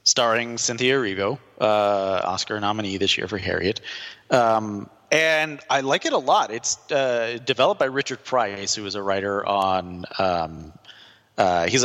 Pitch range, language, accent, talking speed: 90-115 Hz, English, American, 145 wpm